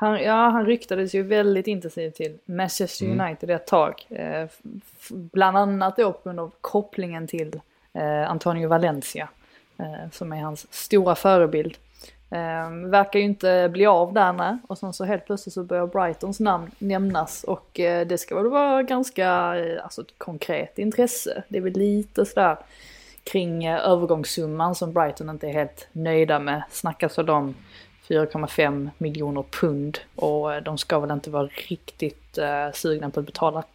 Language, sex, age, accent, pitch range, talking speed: Swedish, female, 20-39, native, 155-195 Hz, 165 wpm